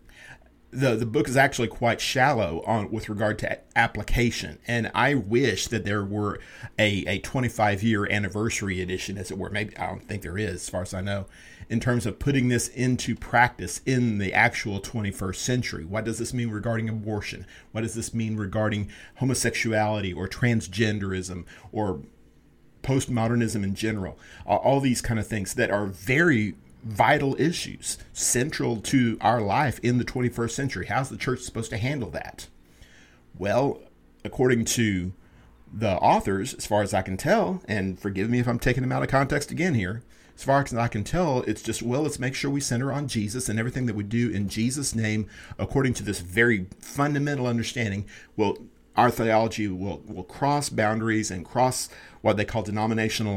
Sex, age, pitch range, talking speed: male, 40-59, 100-120 Hz, 180 wpm